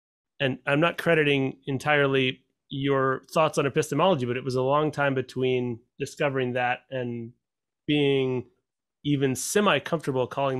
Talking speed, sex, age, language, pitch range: 130 wpm, male, 30-49, English, 125-150 Hz